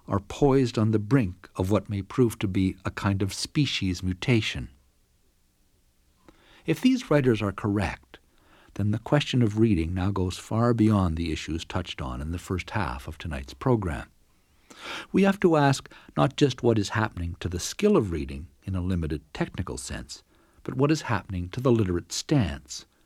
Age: 60-79